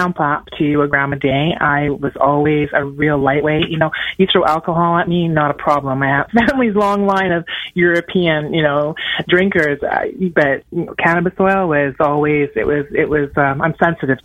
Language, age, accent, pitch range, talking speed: English, 30-49, American, 145-175 Hz, 195 wpm